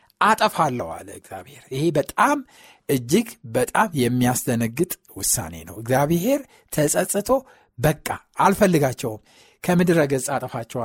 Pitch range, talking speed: 120-170 Hz, 90 wpm